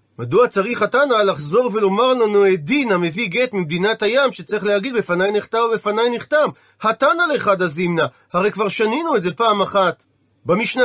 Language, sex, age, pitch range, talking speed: Hebrew, male, 40-59, 180-225 Hz, 160 wpm